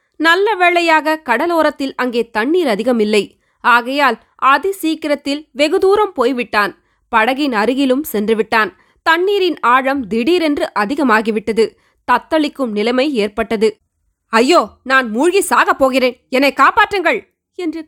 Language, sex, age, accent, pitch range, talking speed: Tamil, female, 20-39, native, 220-315 Hz, 95 wpm